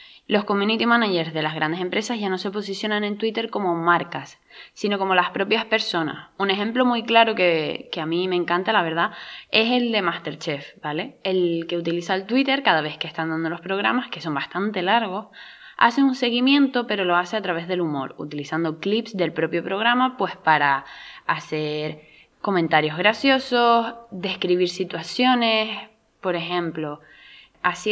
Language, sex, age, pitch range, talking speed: Spanish, female, 20-39, 165-215 Hz, 170 wpm